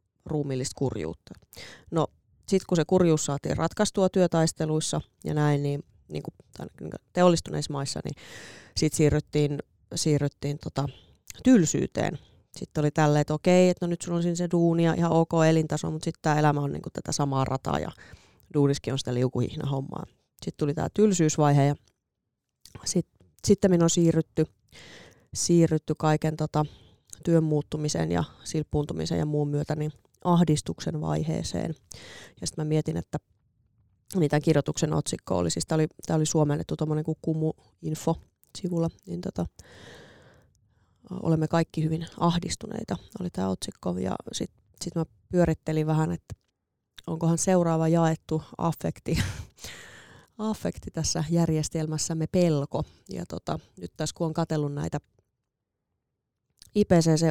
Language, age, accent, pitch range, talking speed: Finnish, 30-49, native, 145-165 Hz, 130 wpm